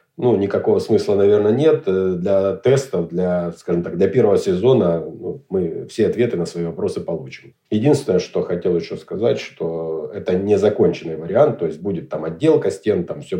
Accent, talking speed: native, 170 wpm